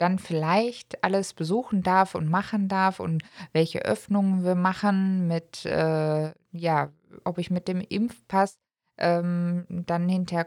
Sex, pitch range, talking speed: female, 160-205 Hz, 140 wpm